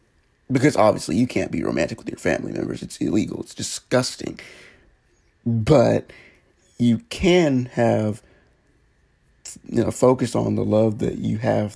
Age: 50-69